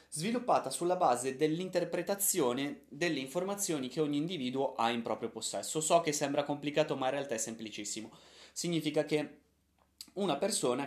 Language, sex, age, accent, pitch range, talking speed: Italian, male, 20-39, native, 115-155 Hz, 145 wpm